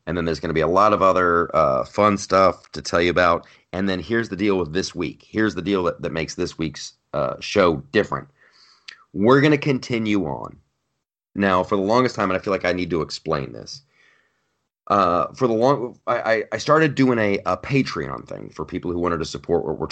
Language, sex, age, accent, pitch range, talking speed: English, male, 30-49, American, 80-105 Hz, 230 wpm